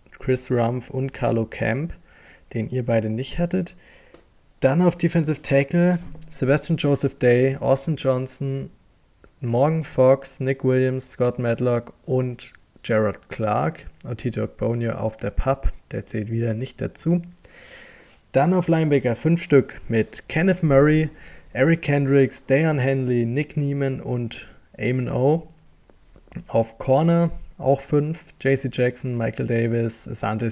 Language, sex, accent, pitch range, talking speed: German, male, German, 115-140 Hz, 125 wpm